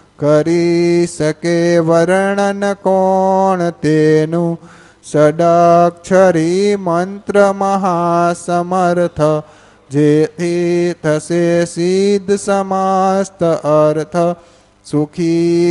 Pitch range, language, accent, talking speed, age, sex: 160-190 Hz, Gujarati, native, 55 wpm, 30-49, male